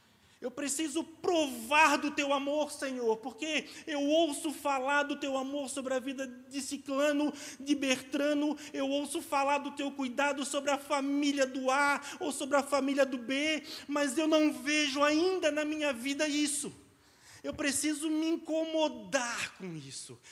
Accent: Brazilian